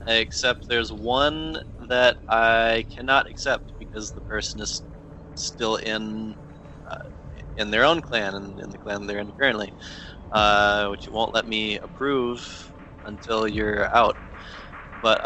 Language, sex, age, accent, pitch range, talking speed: English, male, 20-39, American, 105-120 Hz, 145 wpm